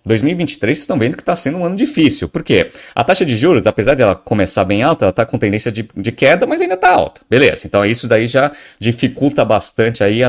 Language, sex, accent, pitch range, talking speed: Portuguese, male, Brazilian, 110-155 Hz, 240 wpm